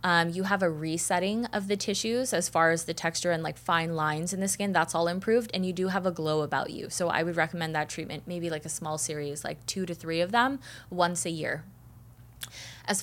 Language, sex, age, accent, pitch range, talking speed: English, female, 20-39, American, 160-190 Hz, 240 wpm